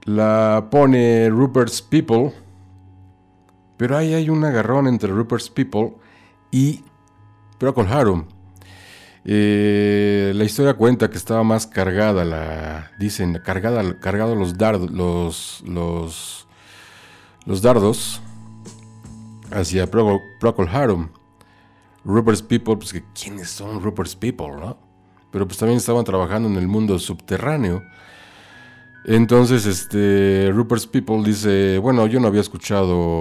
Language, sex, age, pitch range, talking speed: Spanish, male, 50-69, 95-115 Hz, 115 wpm